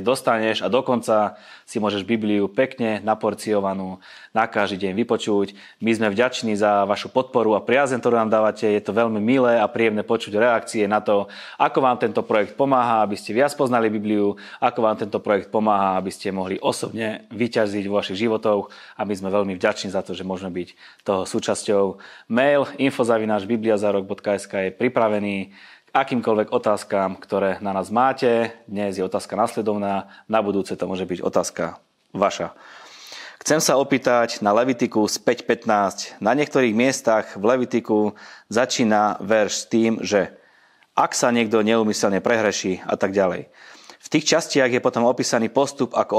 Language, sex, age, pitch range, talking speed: Slovak, male, 20-39, 100-120 Hz, 160 wpm